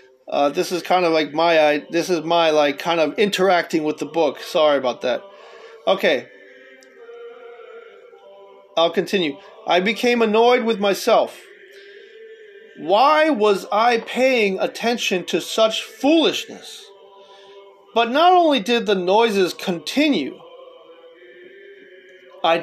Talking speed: 120 wpm